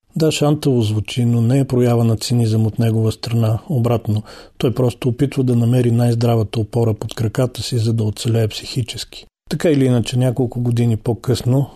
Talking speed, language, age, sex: 170 wpm, Bulgarian, 40-59, male